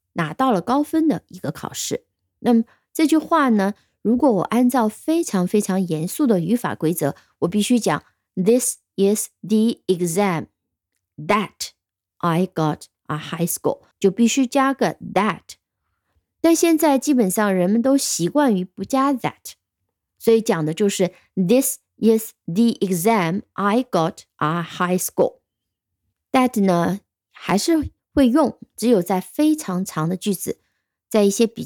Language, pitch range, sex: Chinese, 175-260 Hz, female